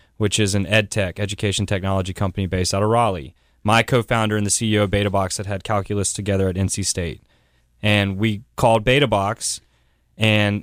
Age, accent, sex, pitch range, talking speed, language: 20-39, American, male, 100-110 Hz, 170 wpm, English